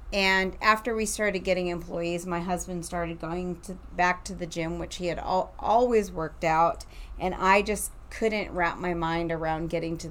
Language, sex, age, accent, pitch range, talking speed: English, female, 30-49, American, 165-195 Hz, 180 wpm